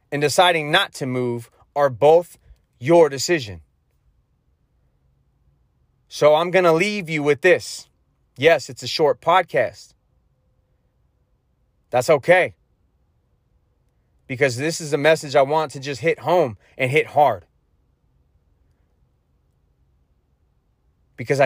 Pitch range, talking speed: 115-150 Hz, 110 wpm